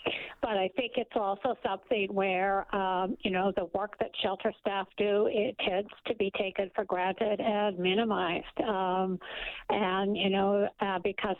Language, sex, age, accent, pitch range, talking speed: English, female, 60-79, American, 170-205 Hz, 165 wpm